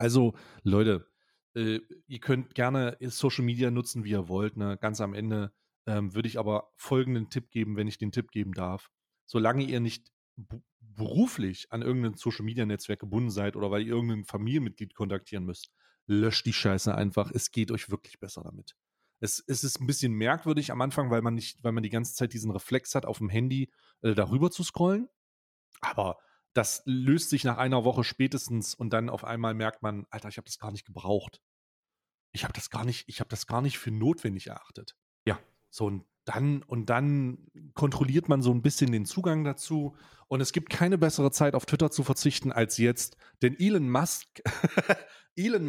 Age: 30-49